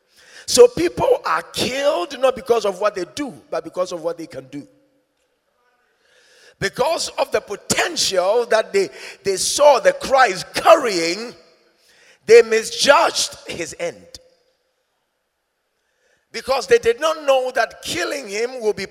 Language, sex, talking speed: English, male, 135 wpm